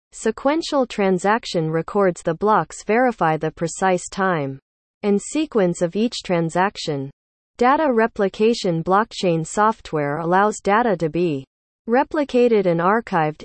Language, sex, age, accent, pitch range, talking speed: English, female, 40-59, American, 165-225 Hz, 110 wpm